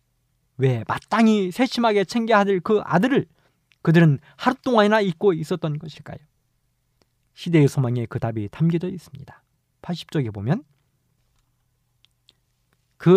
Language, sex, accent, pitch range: Korean, male, native, 130-185 Hz